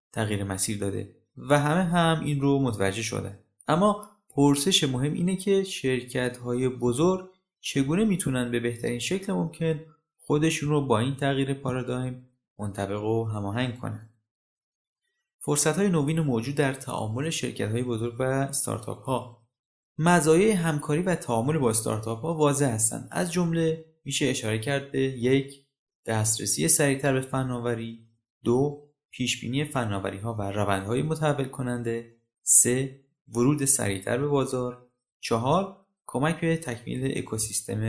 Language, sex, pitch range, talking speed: Persian, male, 115-150 Hz, 125 wpm